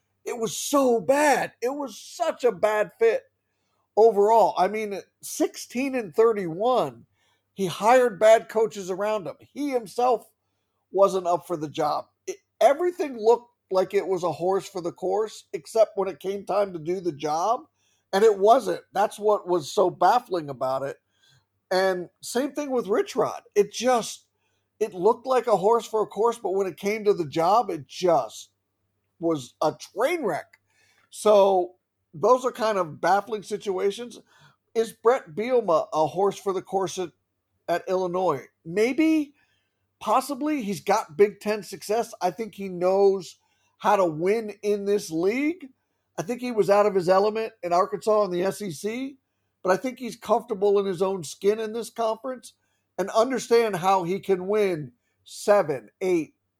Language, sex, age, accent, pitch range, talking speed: English, male, 50-69, American, 180-230 Hz, 165 wpm